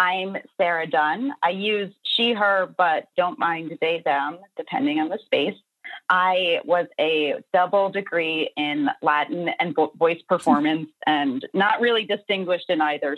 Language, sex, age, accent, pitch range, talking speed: English, female, 30-49, American, 155-190 Hz, 145 wpm